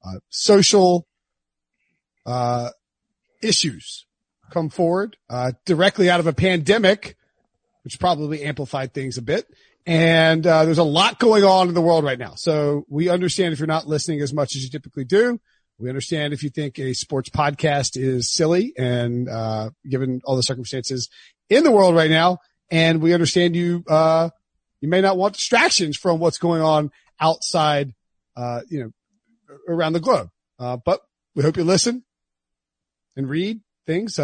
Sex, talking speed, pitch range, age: male, 165 wpm, 140-185 Hz, 40-59